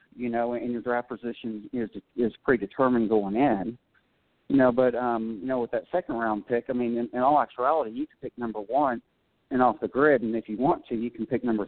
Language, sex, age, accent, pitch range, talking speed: English, male, 40-59, American, 115-130 Hz, 235 wpm